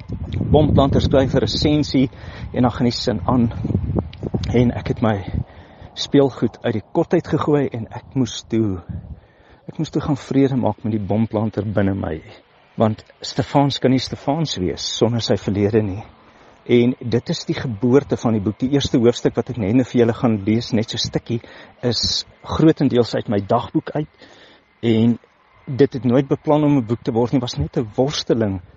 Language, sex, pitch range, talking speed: Dutch, male, 110-135 Hz, 180 wpm